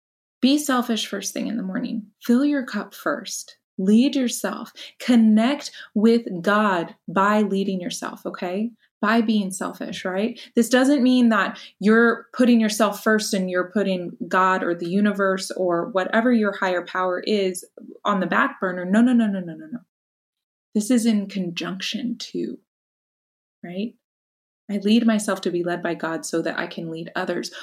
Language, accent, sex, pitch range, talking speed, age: English, American, female, 185-225 Hz, 165 wpm, 20-39